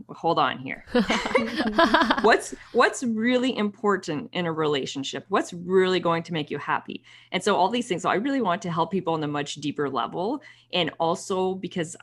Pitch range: 140-165 Hz